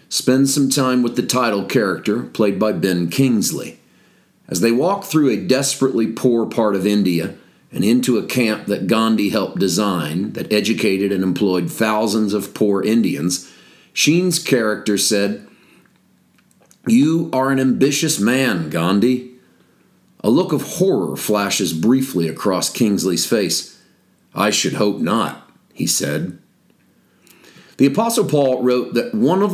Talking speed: 140 wpm